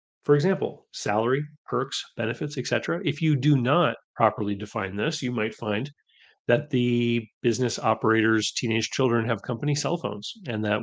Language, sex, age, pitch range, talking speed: English, male, 30-49, 105-135 Hz, 160 wpm